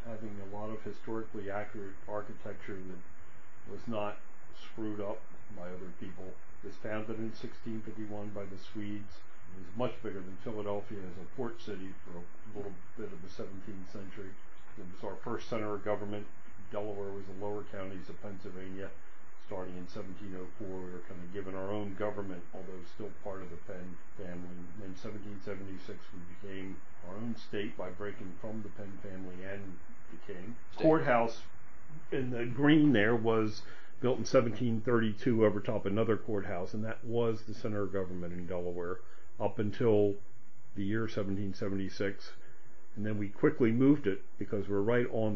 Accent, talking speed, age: American, 165 wpm, 50-69